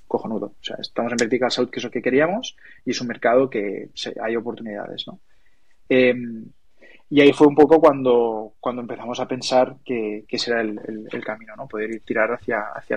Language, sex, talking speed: Spanish, male, 210 wpm